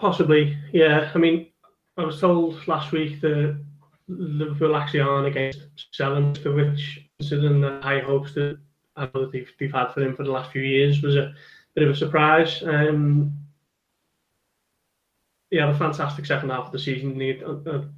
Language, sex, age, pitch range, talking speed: English, male, 20-39, 140-155 Hz, 175 wpm